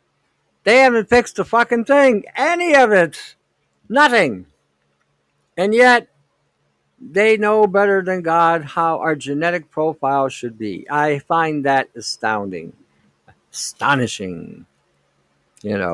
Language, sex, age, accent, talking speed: English, male, 60-79, American, 110 wpm